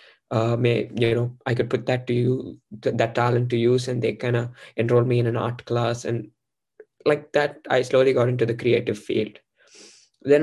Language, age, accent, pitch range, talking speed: English, 20-39, Indian, 120-130 Hz, 200 wpm